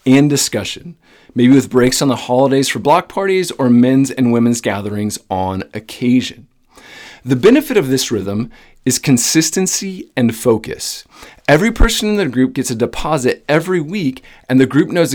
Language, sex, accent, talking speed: English, male, American, 160 wpm